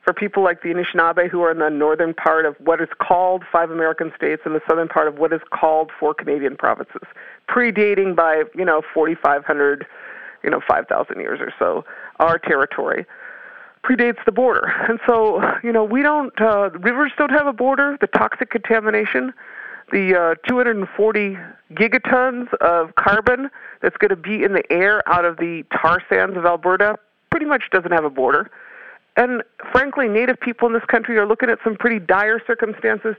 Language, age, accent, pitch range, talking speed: English, 50-69, American, 175-230 Hz, 180 wpm